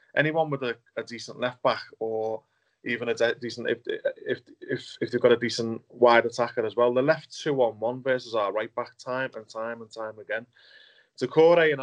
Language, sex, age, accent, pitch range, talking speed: English, male, 20-39, British, 115-150 Hz, 205 wpm